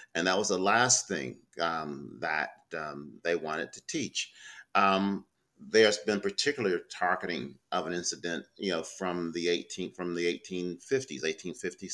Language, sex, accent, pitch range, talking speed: English, male, American, 85-105 Hz, 160 wpm